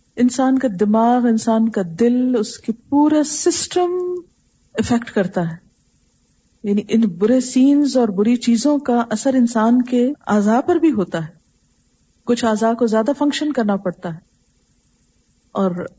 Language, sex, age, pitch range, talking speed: Urdu, female, 40-59, 195-255 Hz, 145 wpm